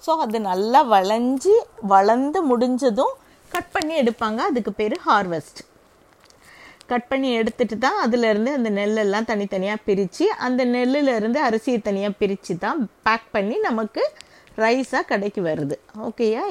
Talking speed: 125 wpm